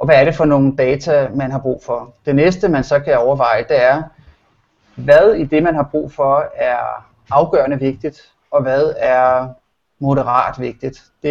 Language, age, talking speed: Danish, 30-49, 185 wpm